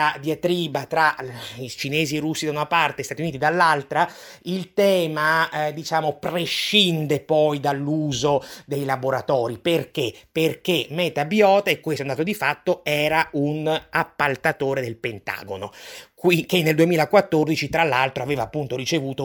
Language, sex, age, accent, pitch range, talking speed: Italian, male, 30-49, native, 145-180 Hz, 145 wpm